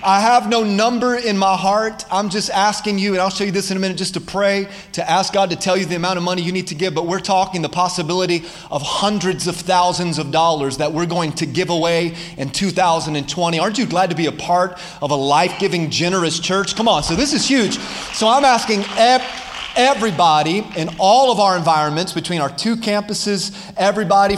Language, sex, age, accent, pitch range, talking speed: English, male, 30-49, American, 175-215 Hz, 215 wpm